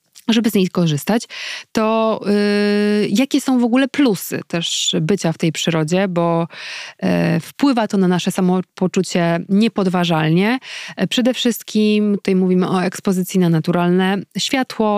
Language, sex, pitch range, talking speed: Polish, female, 170-205 Hz, 125 wpm